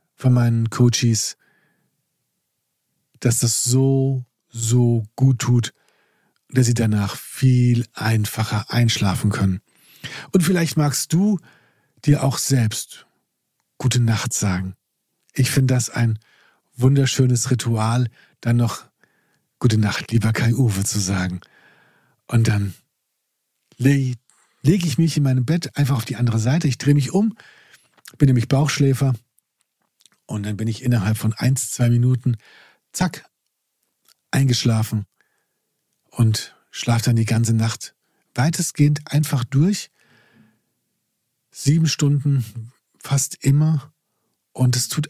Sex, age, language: male, 50-69, German